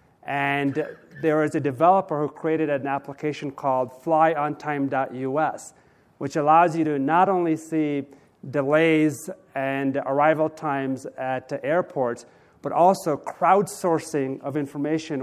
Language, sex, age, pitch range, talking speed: English, male, 40-59, 140-165 Hz, 115 wpm